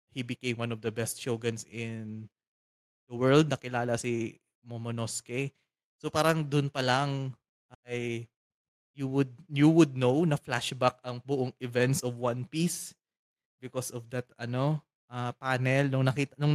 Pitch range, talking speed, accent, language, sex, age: 115-135 Hz, 145 wpm, native, Filipino, male, 20-39